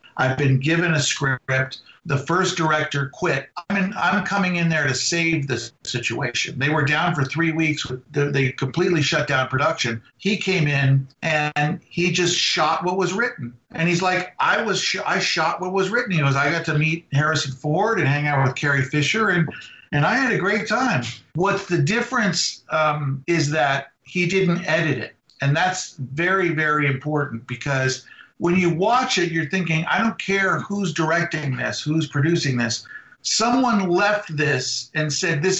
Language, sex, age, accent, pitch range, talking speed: English, male, 50-69, American, 140-180 Hz, 185 wpm